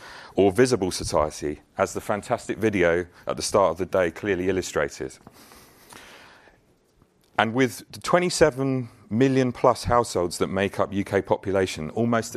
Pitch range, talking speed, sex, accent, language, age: 90-120 Hz, 130 wpm, male, British, English, 30-49